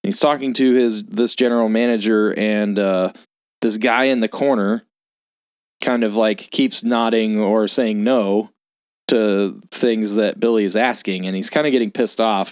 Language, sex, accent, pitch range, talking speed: English, male, American, 105-125 Hz, 170 wpm